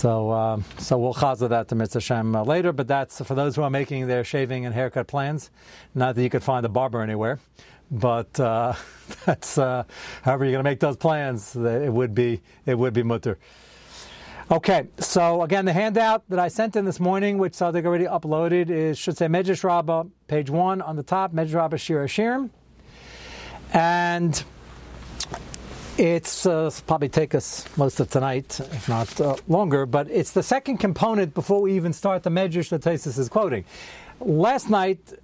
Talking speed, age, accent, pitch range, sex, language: 180 wpm, 60-79, American, 135-185 Hz, male, English